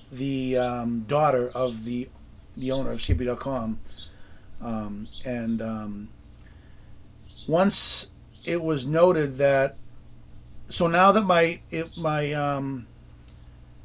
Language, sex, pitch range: English, male, 110-155 Hz